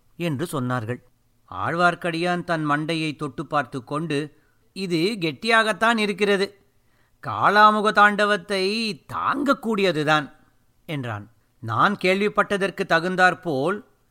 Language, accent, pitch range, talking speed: Tamil, native, 130-200 Hz, 70 wpm